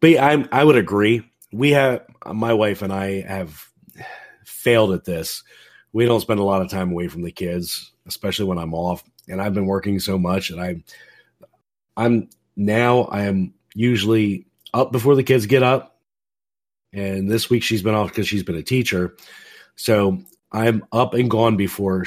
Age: 30-49